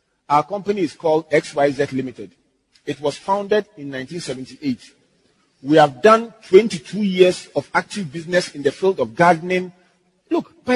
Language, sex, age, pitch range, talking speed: English, male, 40-59, 140-185 Hz, 145 wpm